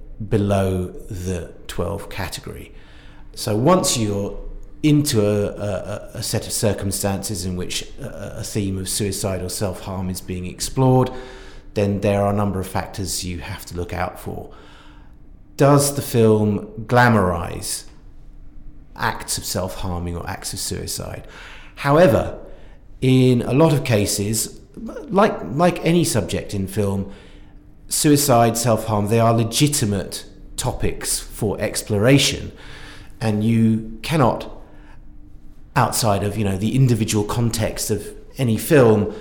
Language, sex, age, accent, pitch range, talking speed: English, male, 40-59, British, 100-115 Hz, 125 wpm